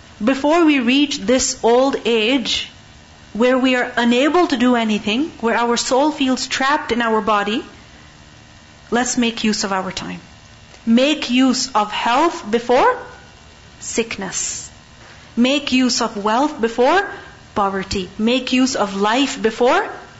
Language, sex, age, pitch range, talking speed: English, female, 40-59, 215-260 Hz, 130 wpm